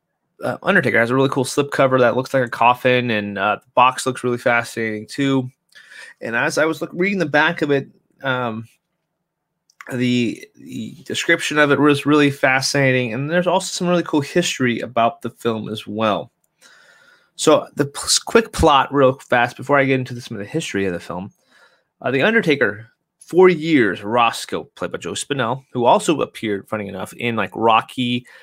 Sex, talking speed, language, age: male, 185 wpm, English, 30-49